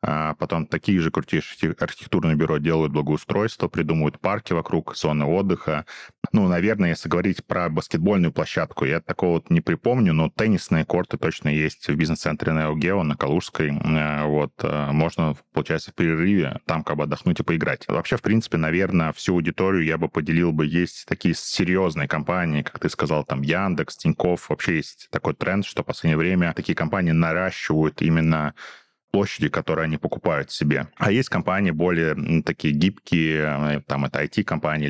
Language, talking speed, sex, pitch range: Russian, 160 wpm, male, 75-85 Hz